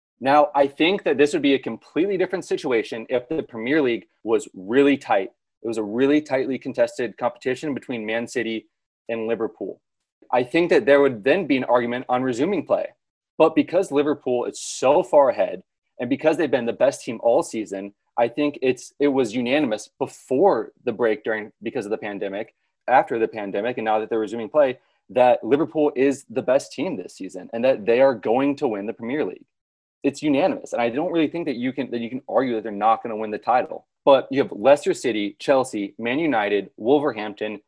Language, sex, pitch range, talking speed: English, male, 115-145 Hz, 205 wpm